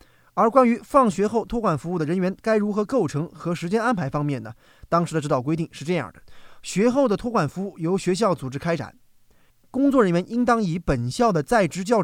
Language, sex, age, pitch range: Chinese, male, 20-39, 145-215 Hz